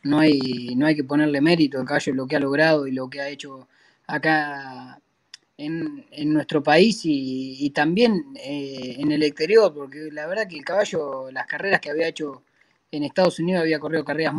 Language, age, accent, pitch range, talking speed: Spanish, 20-39, Argentinian, 140-175 Hz, 195 wpm